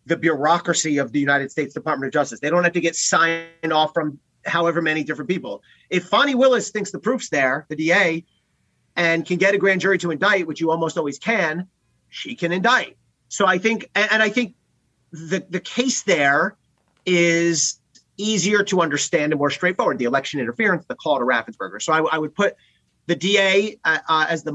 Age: 30-49